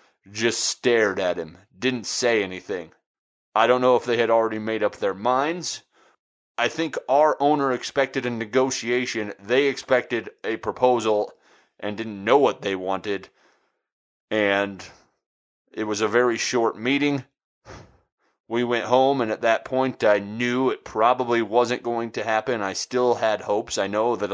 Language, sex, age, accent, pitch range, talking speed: English, male, 30-49, American, 105-125 Hz, 160 wpm